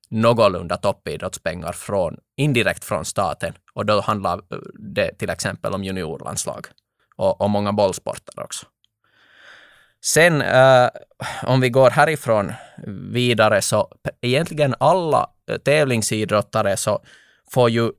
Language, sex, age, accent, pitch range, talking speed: Swedish, male, 20-39, Finnish, 105-125 Hz, 115 wpm